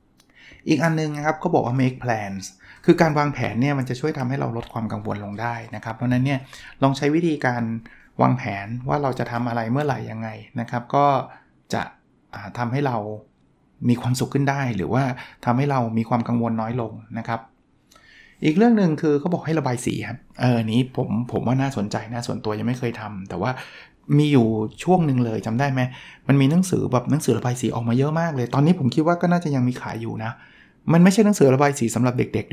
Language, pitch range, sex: Thai, 115-145 Hz, male